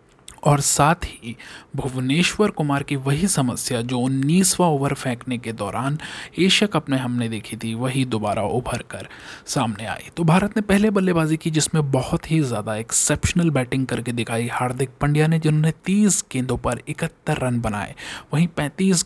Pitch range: 120-160 Hz